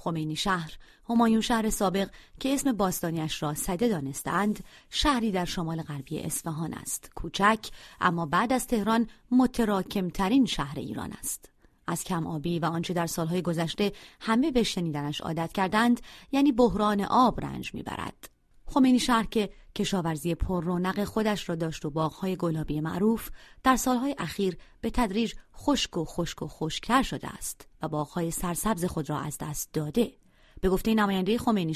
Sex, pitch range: female, 160-220 Hz